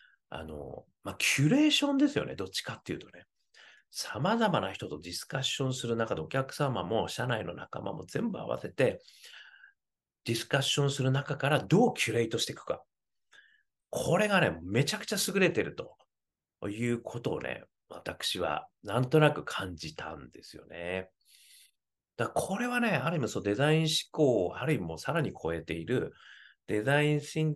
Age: 40-59